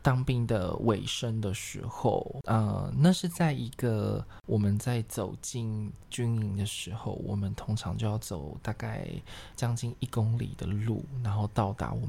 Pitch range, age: 105-130 Hz, 20-39